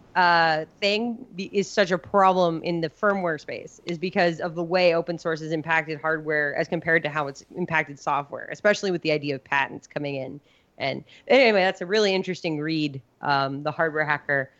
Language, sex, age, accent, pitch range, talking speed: English, female, 20-39, American, 155-180 Hz, 195 wpm